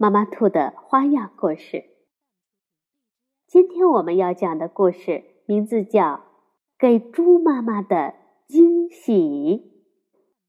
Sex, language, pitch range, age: female, Chinese, 205-325 Hz, 20-39